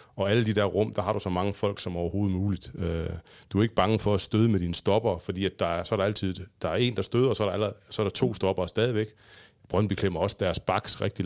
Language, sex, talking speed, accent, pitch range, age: Danish, male, 295 wpm, native, 90-105 Hz, 30-49